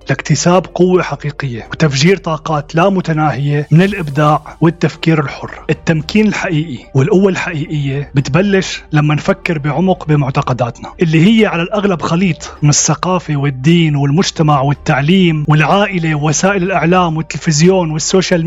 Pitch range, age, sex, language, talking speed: 150-185 Hz, 30-49, male, Arabic, 115 wpm